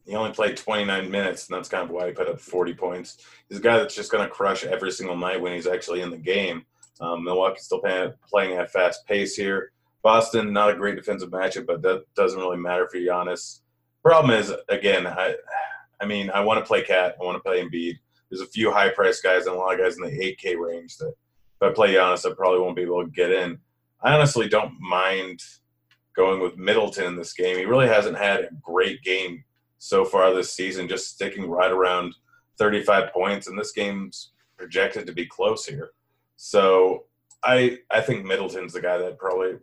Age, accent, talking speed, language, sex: 30-49, American, 215 wpm, English, male